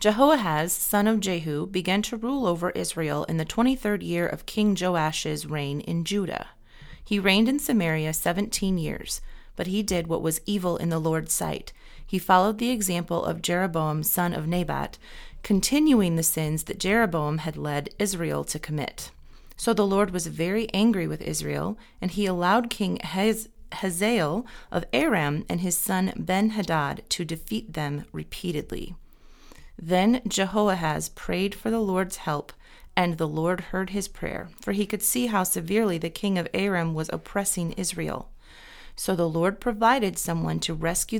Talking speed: 160 wpm